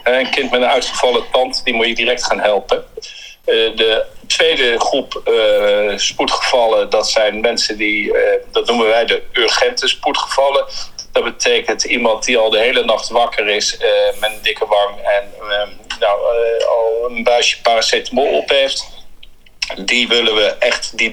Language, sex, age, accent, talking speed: Dutch, male, 50-69, Dutch, 175 wpm